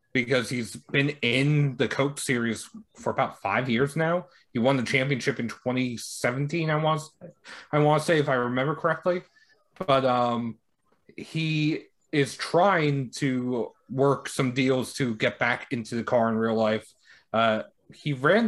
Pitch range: 125-165 Hz